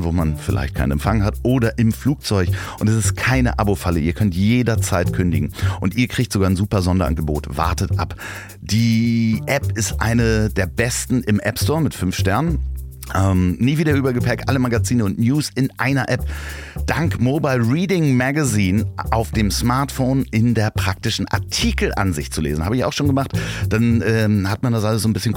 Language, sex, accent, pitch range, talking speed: German, male, German, 85-115 Hz, 180 wpm